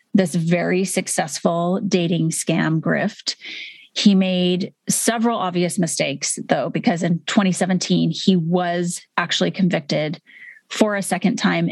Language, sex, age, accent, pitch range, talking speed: English, female, 30-49, American, 175-205 Hz, 120 wpm